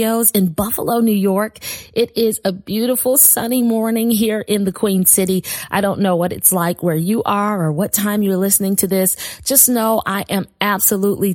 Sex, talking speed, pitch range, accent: female, 190 wpm, 185-220 Hz, American